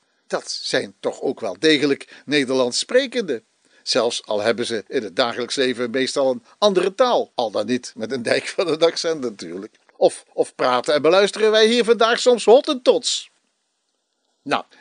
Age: 50-69